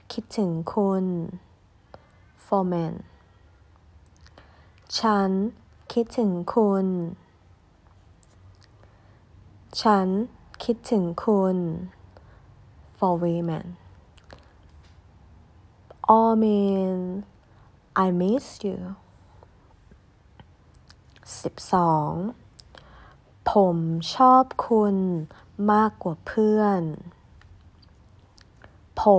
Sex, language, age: female, Thai, 30-49